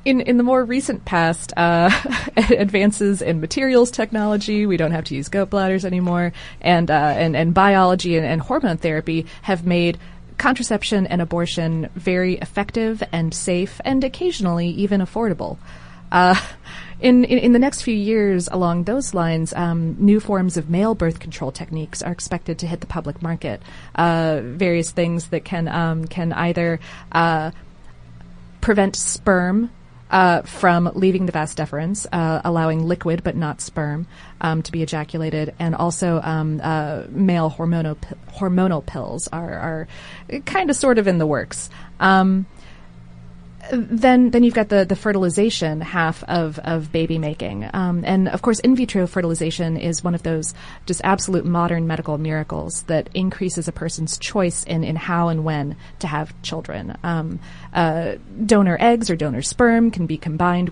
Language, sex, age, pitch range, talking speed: English, female, 30-49, 160-195 Hz, 160 wpm